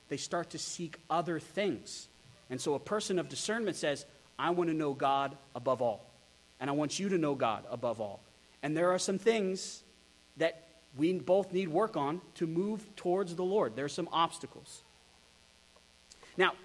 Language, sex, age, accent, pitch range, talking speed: English, male, 30-49, American, 120-165 Hz, 180 wpm